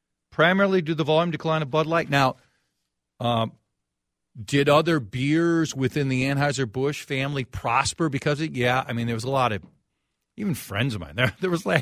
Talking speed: 190 wpm